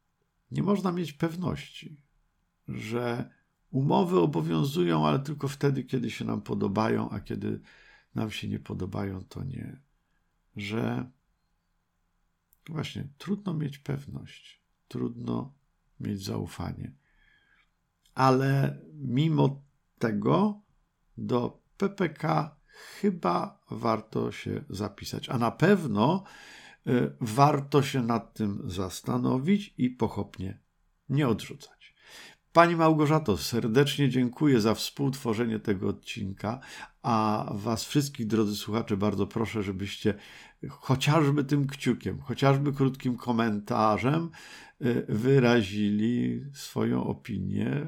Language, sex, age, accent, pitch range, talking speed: Polish, male, 50-69, native, 105-145 Hz, 95 wpm